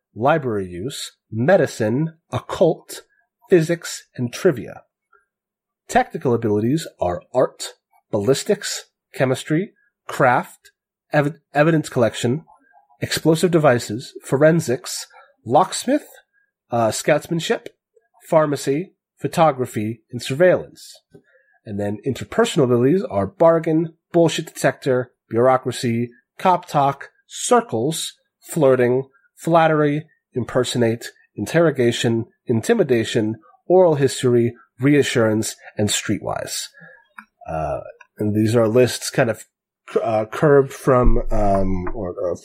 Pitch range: 110-165 Hz